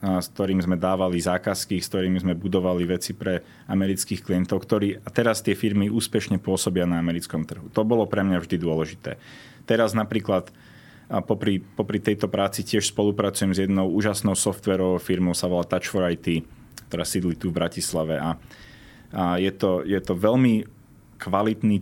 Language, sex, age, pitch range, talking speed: Slovak, male, 30-49, 90-110 Hz, 170 wpm